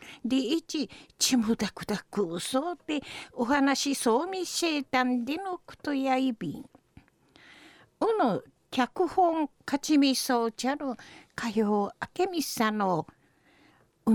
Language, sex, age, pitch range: Japanese, female, 50-69, 230-300 Hz